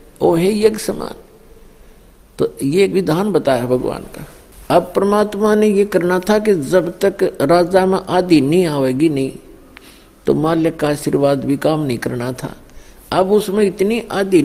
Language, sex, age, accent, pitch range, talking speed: Hindi, male, 60-79, native, 140-195 Hz, 150 wpm